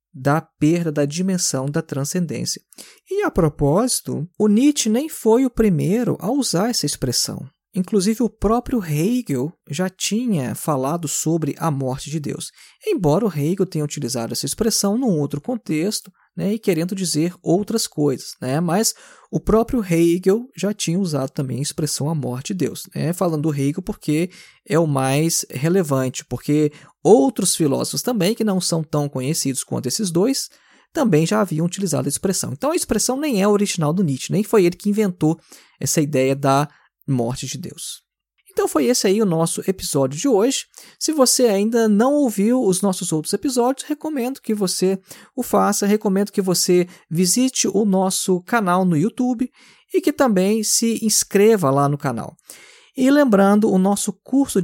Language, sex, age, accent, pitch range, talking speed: Portuguese, male, 20-39, Brazilian, 150-220 Hz, 170 wpm